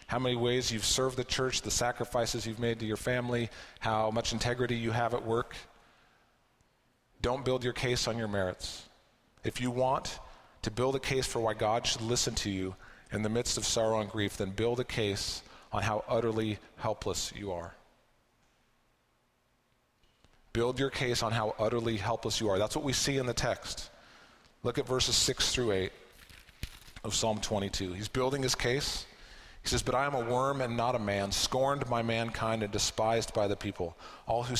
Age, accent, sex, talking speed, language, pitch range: 40-59, American, male, 190 wpm, English, 105-125 Hz